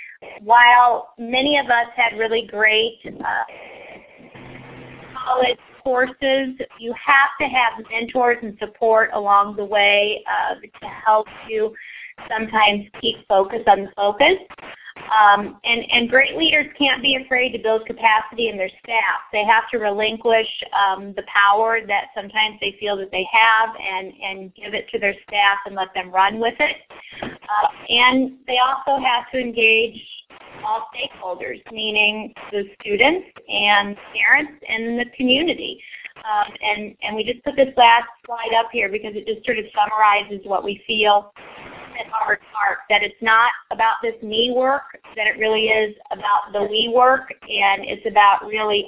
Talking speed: 160 wpm